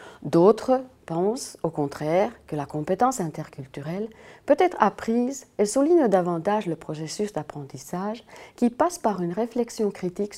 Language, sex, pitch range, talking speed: French, female, 165-240 Hz, 135 wpm